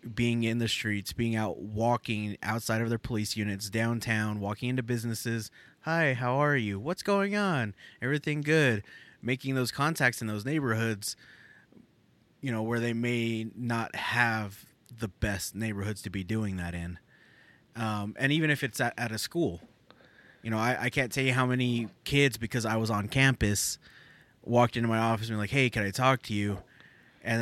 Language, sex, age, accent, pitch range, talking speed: English, male, 20-39, American, 105-120 Hz, 180 wpm